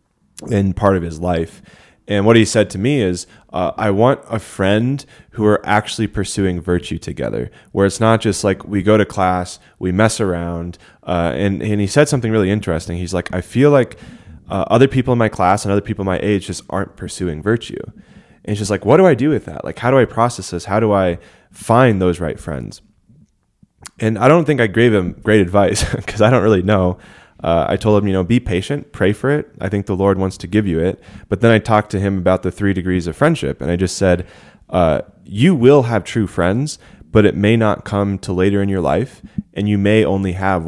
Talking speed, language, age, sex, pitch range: 230 wpm, English, 20-39, male, 90-110 Hz